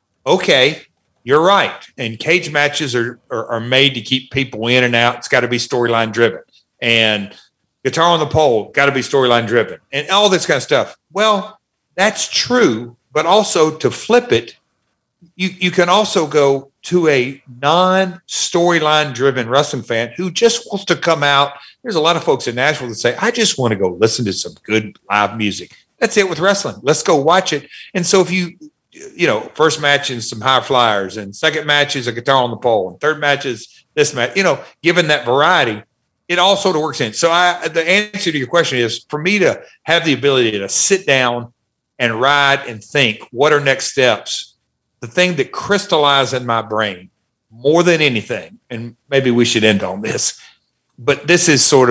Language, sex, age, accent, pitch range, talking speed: English, male, 50-69, American, 120-170 Hz, 195 wpm